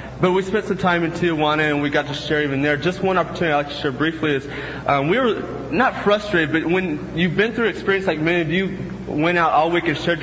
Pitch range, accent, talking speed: 130-160 Hz, American, 265 wpm